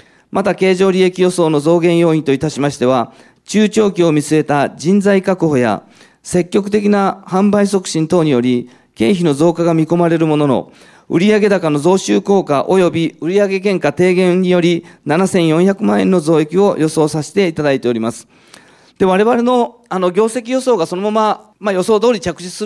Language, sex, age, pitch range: Japanese, male, 40-59, 150-215 Hz